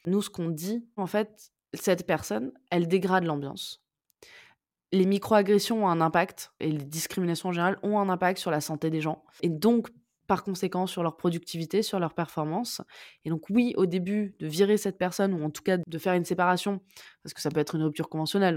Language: French